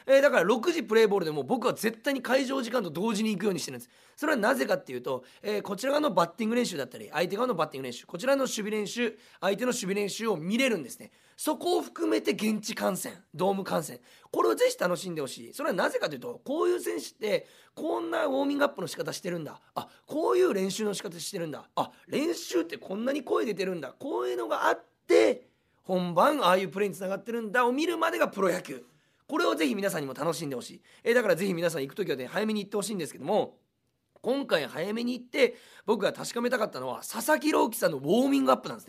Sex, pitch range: male, 170-260 Hz